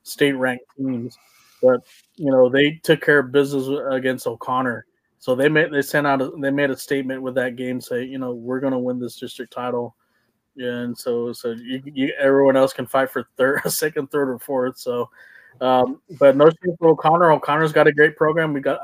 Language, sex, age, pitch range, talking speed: English, male, 20-39, 130-145 Hz, 205 wpm